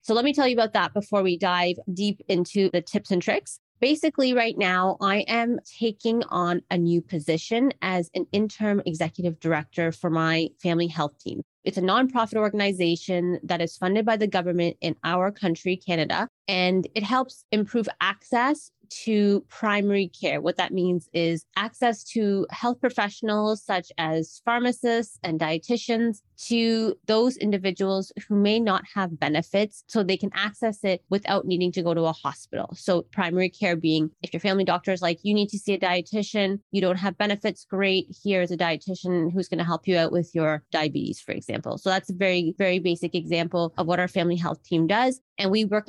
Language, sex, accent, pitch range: English, female, American, 175-215 Hz